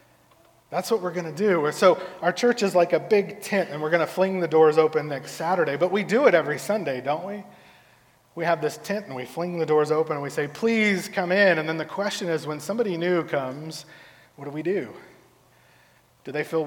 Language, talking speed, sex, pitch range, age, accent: English, 230 wpm, male, 150-180 Hz, 30-49, American